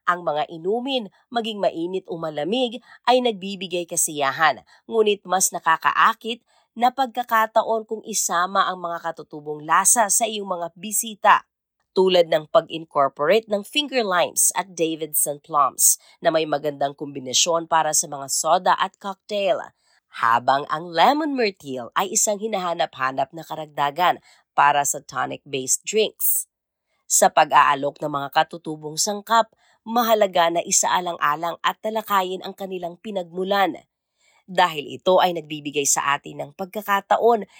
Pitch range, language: 150-220 Hz, Filipino